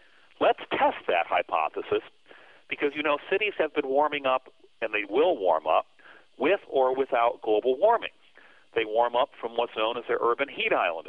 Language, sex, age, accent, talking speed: English, male, 40-59, American, 180 wpm